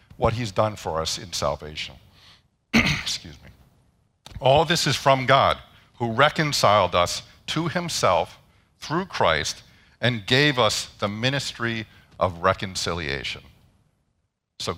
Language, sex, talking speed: English, male, 120 wpm